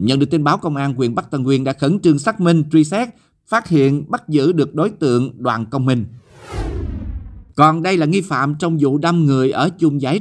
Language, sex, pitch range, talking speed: Vietnamese, male, 130-155 Hz, 230 wpm